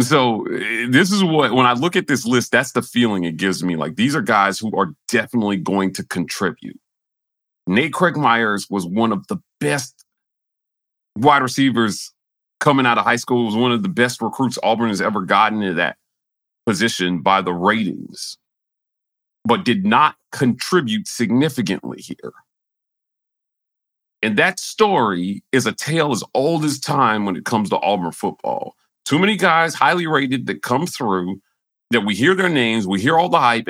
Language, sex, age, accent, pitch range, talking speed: English, male, 40-59, American, 105-175 Hz, 175 wpm